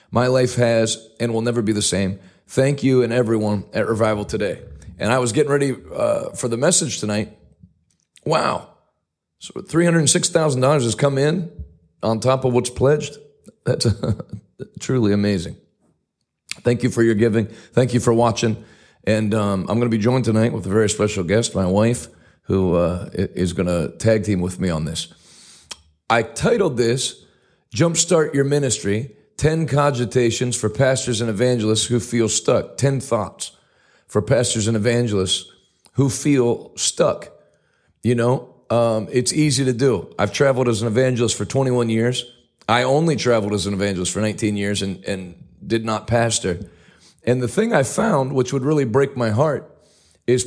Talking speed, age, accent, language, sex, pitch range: 170 wpm, 40-59, American, English, male, 105-135 Hz